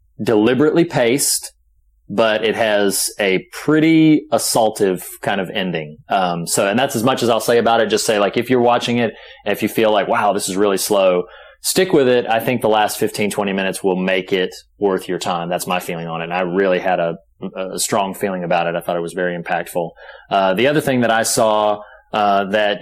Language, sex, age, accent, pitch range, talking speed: English, male, 30-49, American, 95-115 Hz, 220 wpm